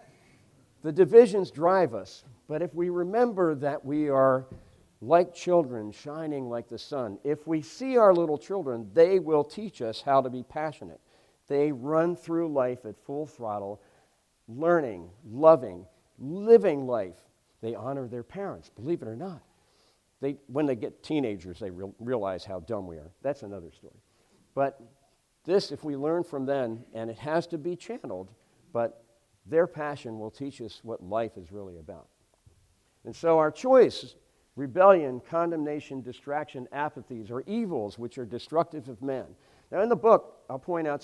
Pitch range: 115-165 Hz